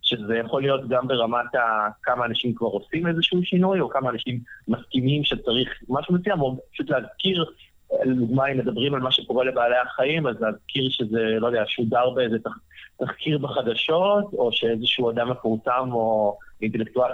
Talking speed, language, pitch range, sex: 160 wpm, Hebrew, 115-145 Hz, male